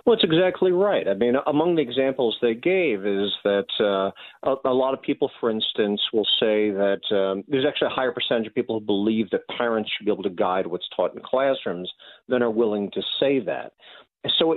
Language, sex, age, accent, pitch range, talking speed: English, male, 50-69, American, 100-140 Hz, 215 wpm